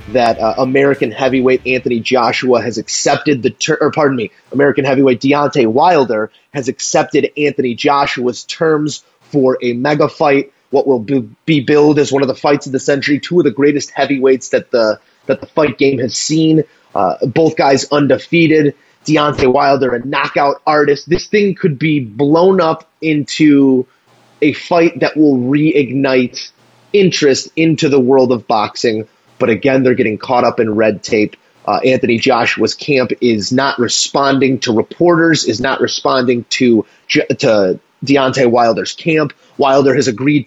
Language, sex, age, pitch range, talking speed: English, male, 30-49, 130-155 Hz, 160 wpm